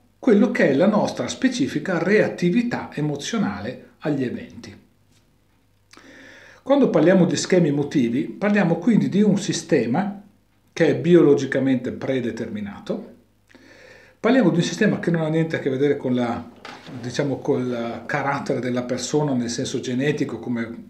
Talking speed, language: 130 wpm, Italian